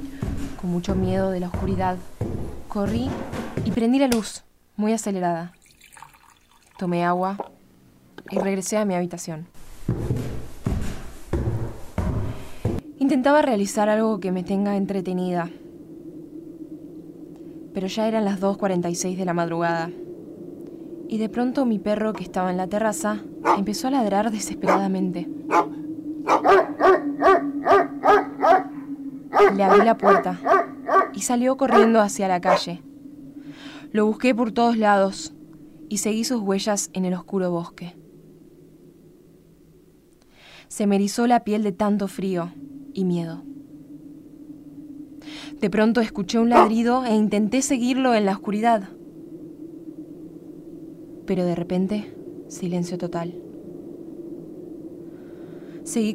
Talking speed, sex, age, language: 105 wpm, female, 10-29, Spanish